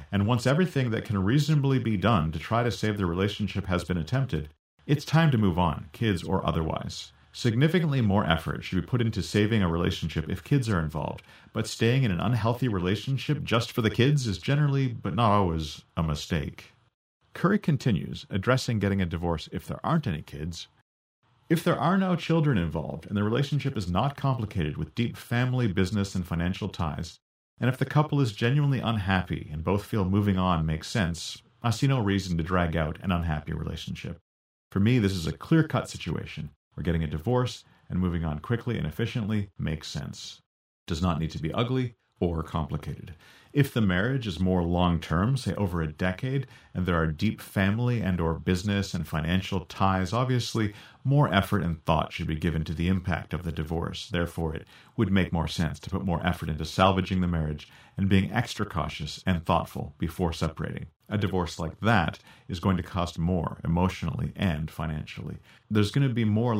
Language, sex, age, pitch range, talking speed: English, male, 40-59, 85-120 Hz, 190 wpm